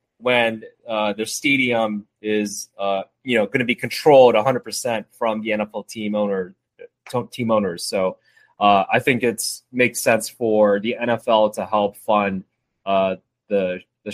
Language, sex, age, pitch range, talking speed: English, male, 20-39, 105-120 Hz, 155 wpm